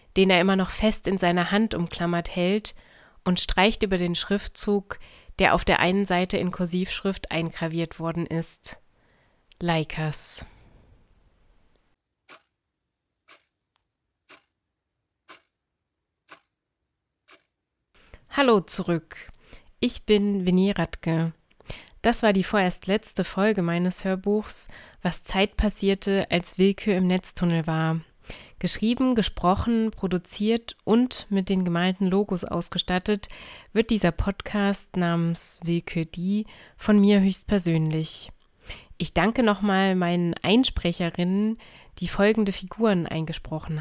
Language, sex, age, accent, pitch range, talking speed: German, female, 20-39, German, 170-205 Hz, 100 wpm